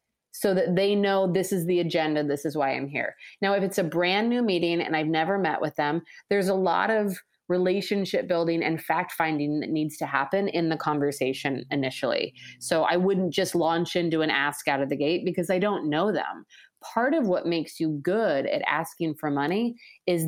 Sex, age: female, 30-49